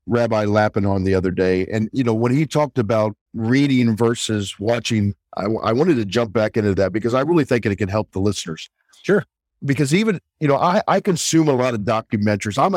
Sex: male